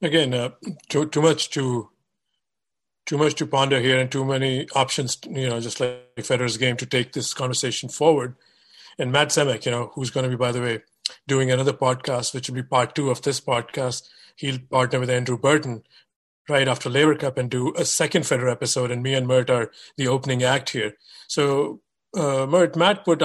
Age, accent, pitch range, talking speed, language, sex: 50-69, Indian, 130-155 Hz, 200 wpm, English, male